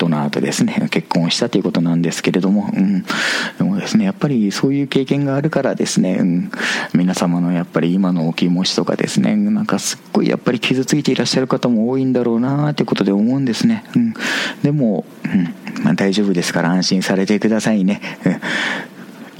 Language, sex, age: Japanese, male, 40-59